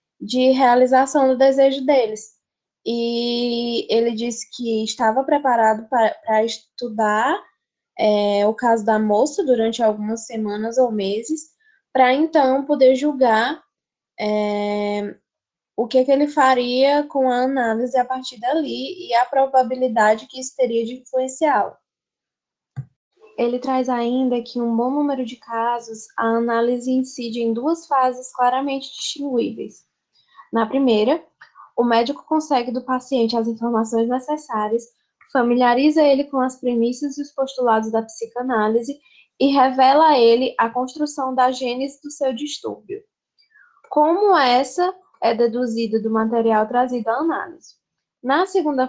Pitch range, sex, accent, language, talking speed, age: 230-275 Hz, female, Brazilian, Portuguese, 130 wpm, 10-29